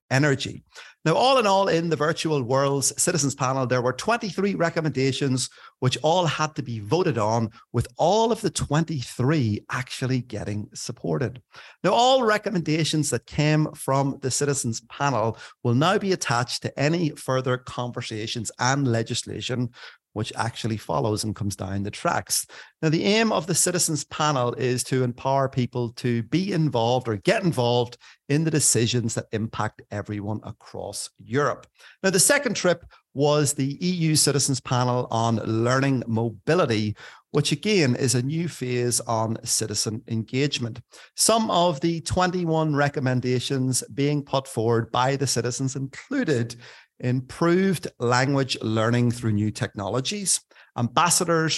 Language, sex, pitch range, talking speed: English, male, 120-155 Hz, 140 wpm